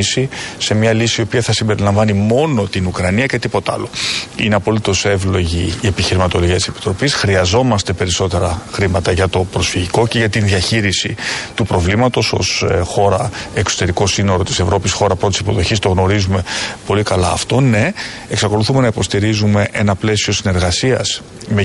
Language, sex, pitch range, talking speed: Greek, male, 95-110 Hz, 150 wpm